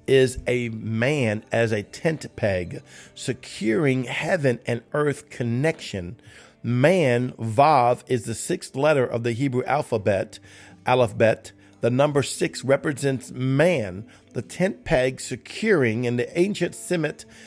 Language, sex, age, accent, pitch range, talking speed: English, male, 50-69, American, 115-145 Hz, 125 wpm